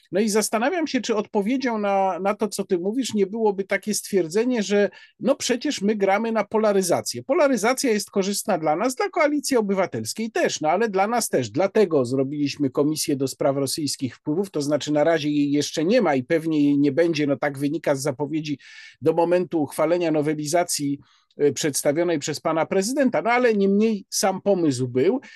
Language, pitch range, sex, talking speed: Polish, 150-220 Hz, male, 180 wpm